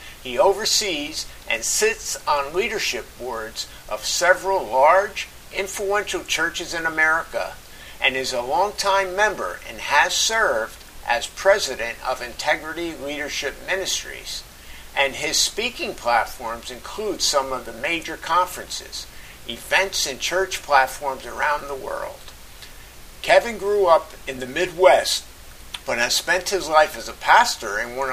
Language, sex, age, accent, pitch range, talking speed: English, male, 50-69, American, 125-195 Hz, 130 wpm